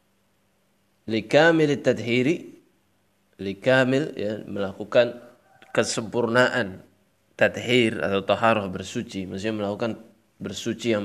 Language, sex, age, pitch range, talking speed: Indonesian, male, 20-39, 100-120 Hz, 75 wpm